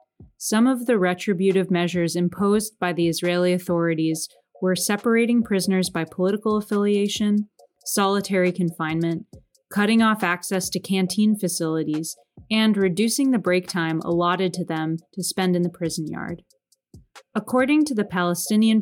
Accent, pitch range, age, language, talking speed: American, 175-210 Hz, 30-49, English, 135 wpm